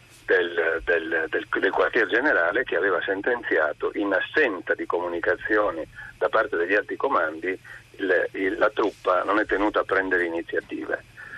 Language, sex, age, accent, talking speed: Italian, male, 50-69, native, 150 wpm